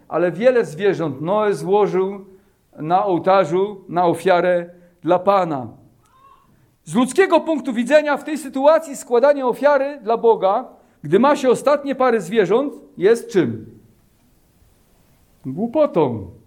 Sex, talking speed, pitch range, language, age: male, 115 wpm, 175-245 Hz, Polish, 50-69